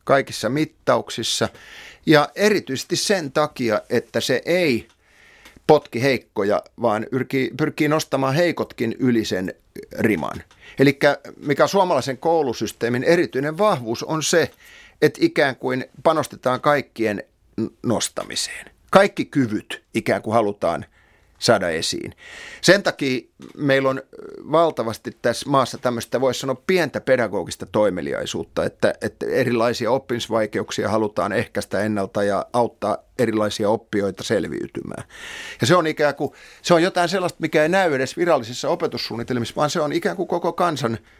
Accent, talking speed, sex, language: native, 125 wpm, male, Finnish